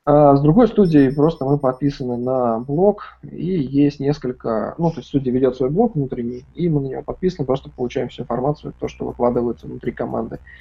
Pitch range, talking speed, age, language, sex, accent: 120-145 Hz, 190 wpm, 20-39, Russian, male, native